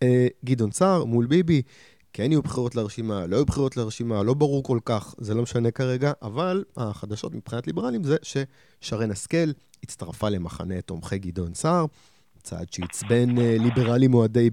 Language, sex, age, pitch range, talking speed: Hebrew, male, 30-49, 105-135 Hz, 150 wpm